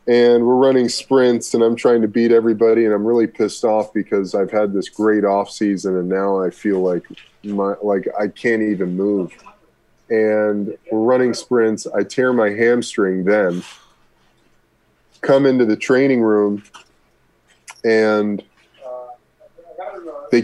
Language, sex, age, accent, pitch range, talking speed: English, male, 20-39, American, 100-115 Hz, 145 wpm